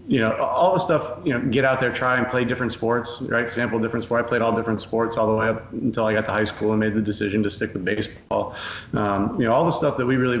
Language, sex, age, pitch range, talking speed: English, male, 30-49, 105-120 Hz, 295 wpm